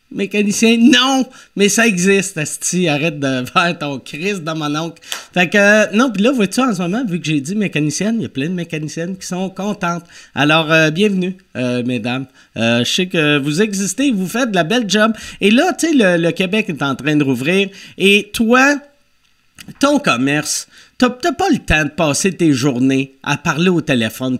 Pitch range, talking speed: 150-215 Hz, 215 wpm